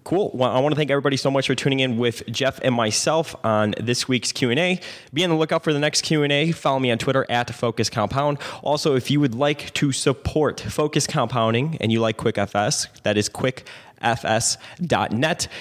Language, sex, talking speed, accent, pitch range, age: English, male, 195 wpm, American, 105-135 Hz, 20-39